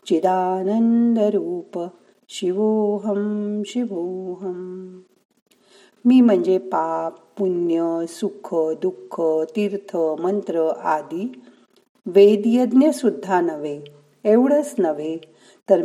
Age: 50-69